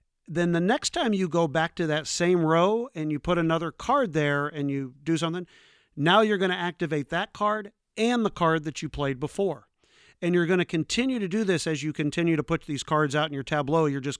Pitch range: 140-170 Hz